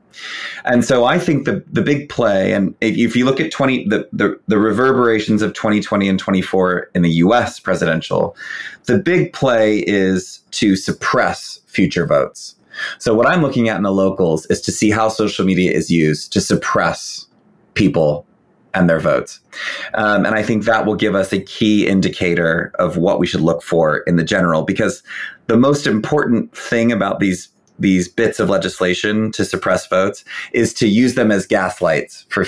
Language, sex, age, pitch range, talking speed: English, male, 30-49, 95-115 Hz, 180 wpm